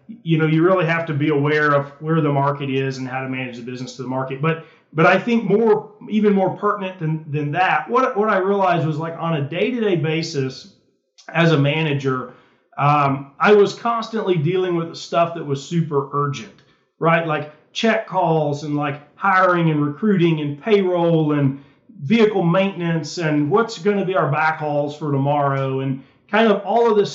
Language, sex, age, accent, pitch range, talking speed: English, male, 40-59, American, 145-185 Hz, 190 wpm